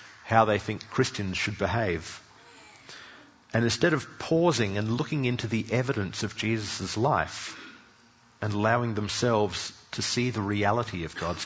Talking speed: 140 wpm